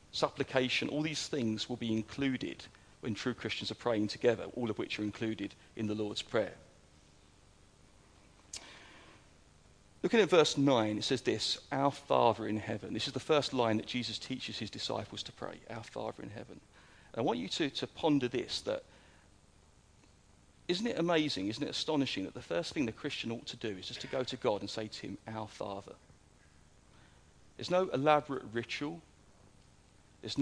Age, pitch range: 40-59, 105-130 Hz